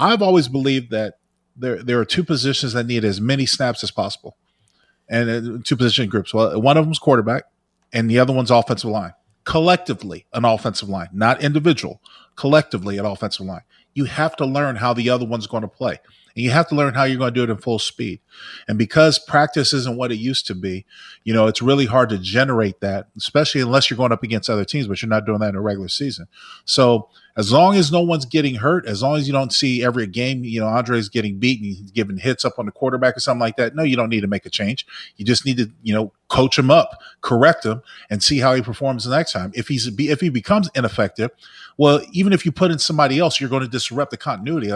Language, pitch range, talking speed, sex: English, 115-145 Hz, 245 wpm, male